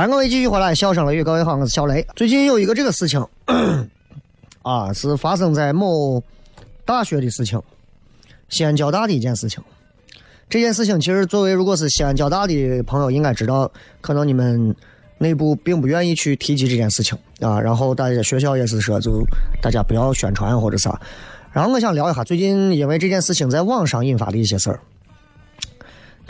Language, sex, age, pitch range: Chinese, male, 30-49, 115-175 Hz